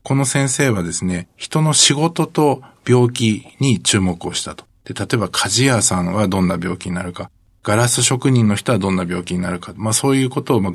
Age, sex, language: 50-69, male, Japanese